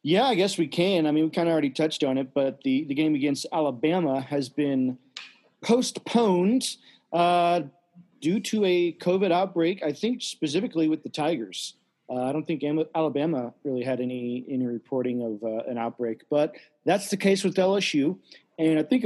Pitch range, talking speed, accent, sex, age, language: 125-165 Hz, 185 wpm, American, male, 40-59, English